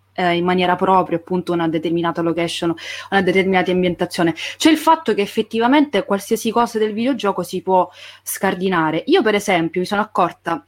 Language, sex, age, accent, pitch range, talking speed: Italian, female, 20-39, native, 170-215 Hz, 165 wpm